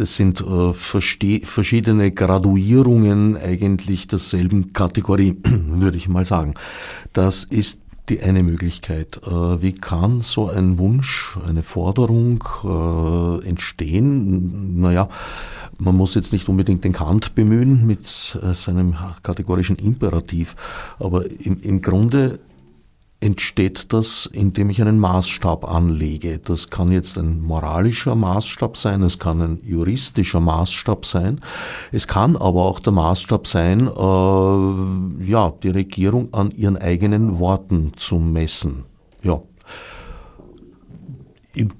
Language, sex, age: German, male, 50-69